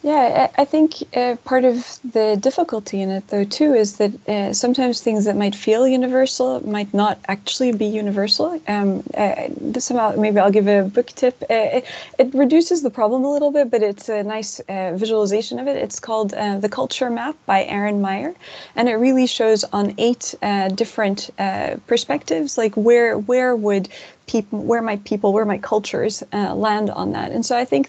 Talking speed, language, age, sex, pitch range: 195 wpm, English, 30-49, female, 205-260 Hz